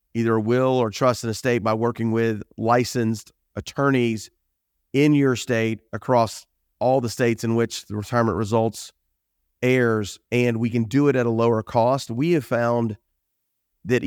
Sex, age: male, 40-59